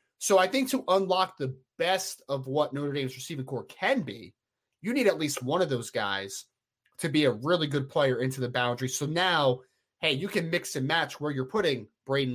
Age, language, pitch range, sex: 30-49, English, 135-185 Hz, male